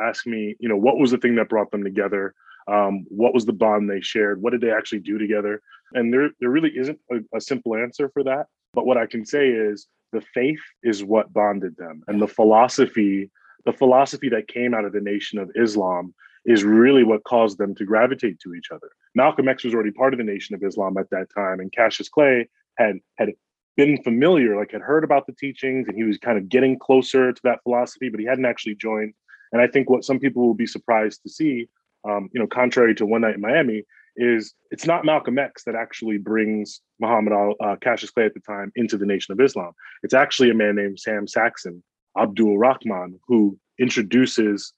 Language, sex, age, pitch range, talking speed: English, male, 20-39, 105-130 Hz, 220 wpm